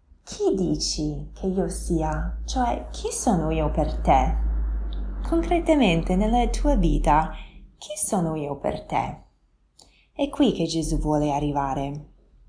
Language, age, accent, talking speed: Italian, 20-39, native, 125 wpm